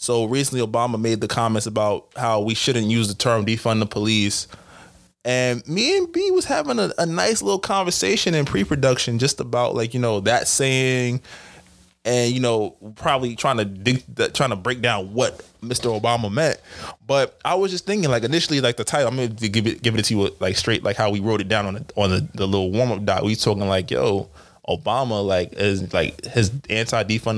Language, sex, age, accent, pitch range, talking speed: English, male, 20-39, American, 105-130 Hz, 215 wpm